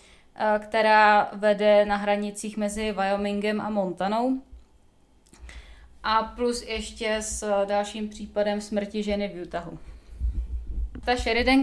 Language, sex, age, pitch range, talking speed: Czech, female, 20-39, 205-225 Hz, 105 wpm